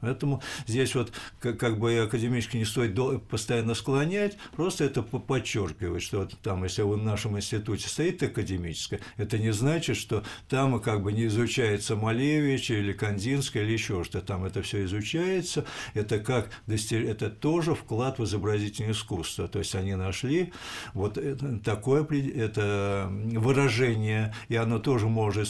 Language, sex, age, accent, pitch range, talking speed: Russian, male, 60-79, native, 105-135 Hz, 145 wpm